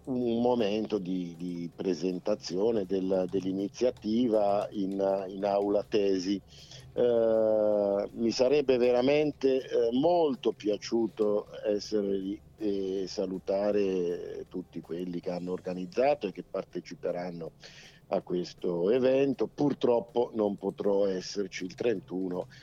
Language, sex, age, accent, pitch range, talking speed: Italian, male, 50-69, native, 95-130 Hz, 105 wpm